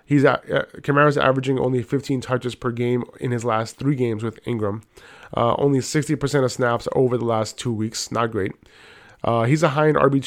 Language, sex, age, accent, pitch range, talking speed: English, male, 20-39, American, 115-140 Hz, 205 wpm